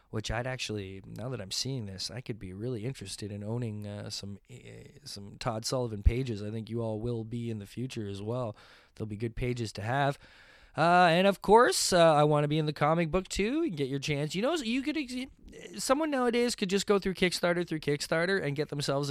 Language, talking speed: English, 235 wpm